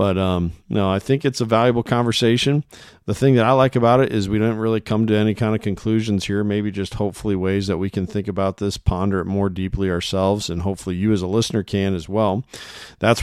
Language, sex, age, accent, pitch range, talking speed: English, male, 40-59, American, 95-110 Hz, 235 wpm